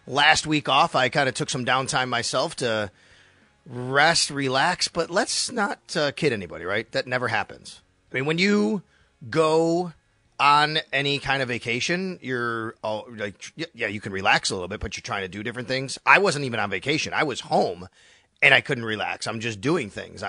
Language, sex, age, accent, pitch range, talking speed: English, male, 30-49, American, 110-155 Hz, 190 wpm